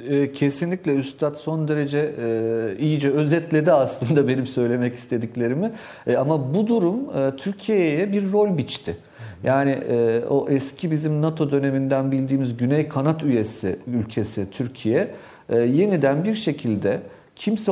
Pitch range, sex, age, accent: 125-185 Hz, male, 40-59, native